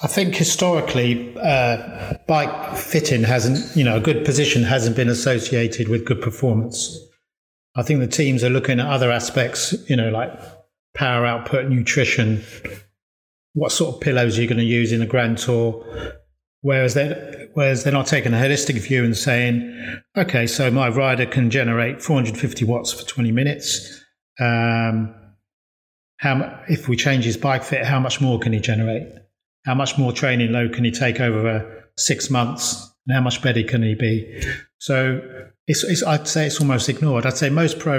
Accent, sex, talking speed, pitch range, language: British, male, 175 wpm, 115-140 Hz, English